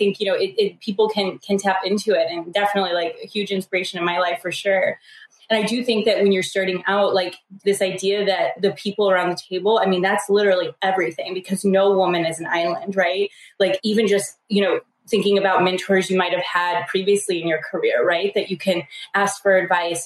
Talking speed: 220 wpm